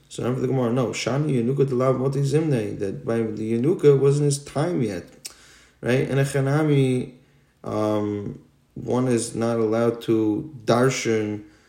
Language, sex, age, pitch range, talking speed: English, male, 20-39, 105-130 Hz, 140 wpm